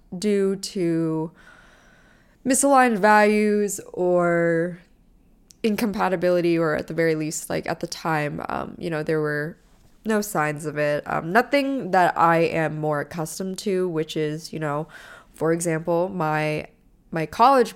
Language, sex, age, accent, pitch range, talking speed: English, female, 20-39, American, 160-195 Hz, 140 wpm